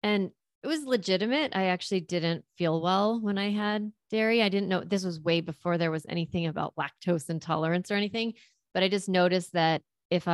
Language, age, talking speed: English, 30-49, 195 wpm